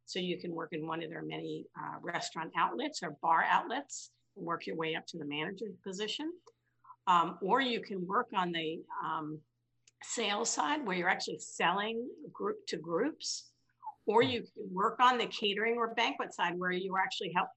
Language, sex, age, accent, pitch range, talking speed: English, female, 50-69, American, 165-220 Hz, 190 wpm